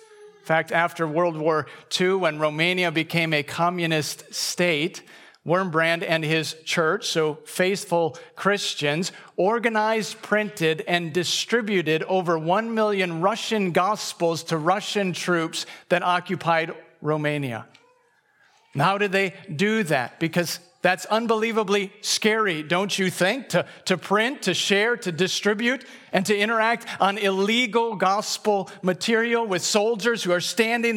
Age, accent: 40-59, American